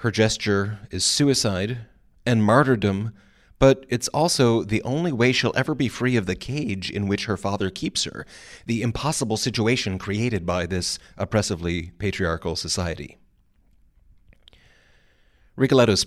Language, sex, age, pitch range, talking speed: English, male, 30-49, 95-120 Hz, 130 wpm